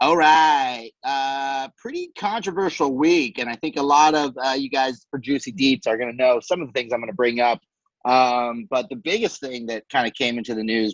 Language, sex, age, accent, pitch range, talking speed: English, male, 30-49, American, 110-135 Hz, 235 wpm